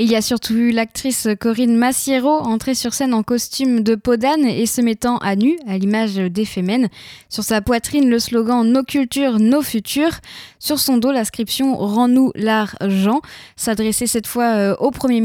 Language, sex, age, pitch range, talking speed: French, female, 10-29, 215-260 Hz, 175 wpm